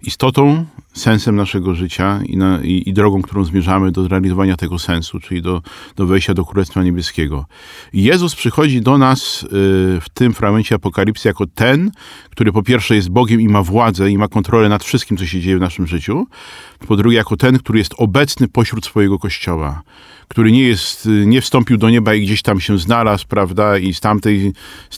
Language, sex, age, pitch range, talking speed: Polish, male, 40-59, 95-115 Hz, 185 wpm